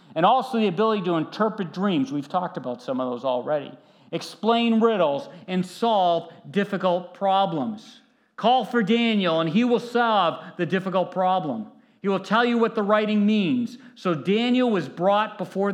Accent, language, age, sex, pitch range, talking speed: American, English, 50-69, male, 160-230 Hz, 165 wpm